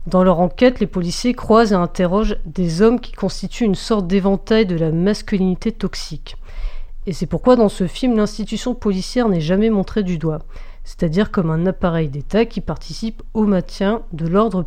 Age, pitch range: 40-59, 175-215 Hz